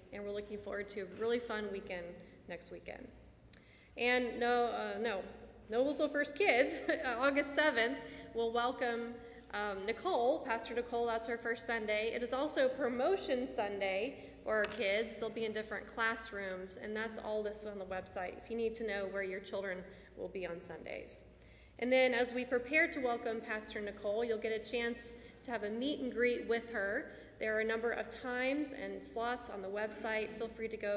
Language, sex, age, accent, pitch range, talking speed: English, female, 30-49, American, 210-245 Hz, 190 wpm